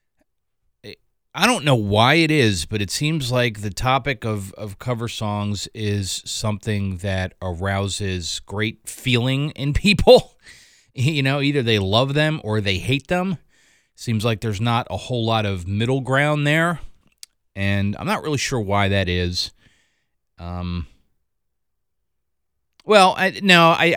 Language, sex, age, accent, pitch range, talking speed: English, male, 30-49, American, 95-125 Hz, 145 wpm